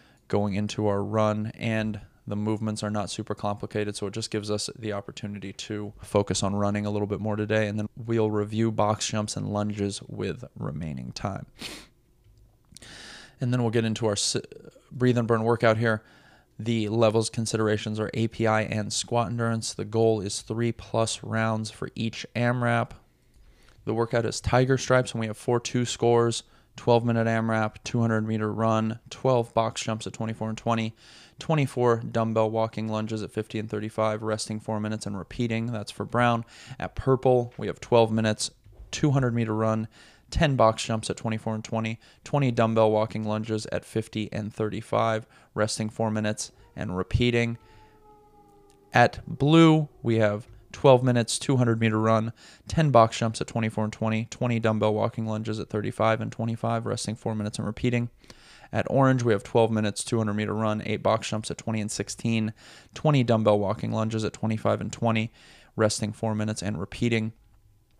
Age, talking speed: 20-39, 170 wpm